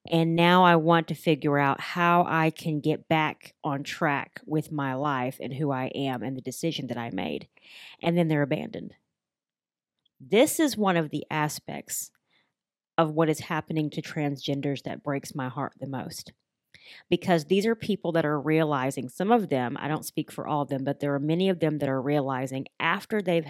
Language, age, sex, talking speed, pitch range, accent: English, 30-49, female, 195 wpm, 145-170 Hz, American